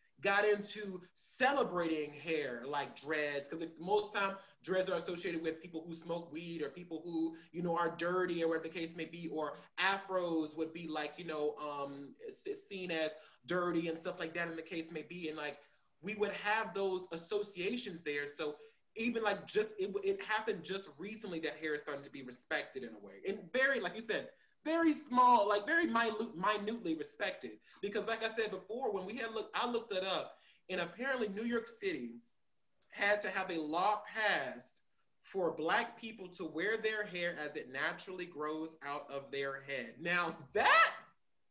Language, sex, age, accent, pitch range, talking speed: English, male, 20-39, American, 165-230 Hz, 185 wpm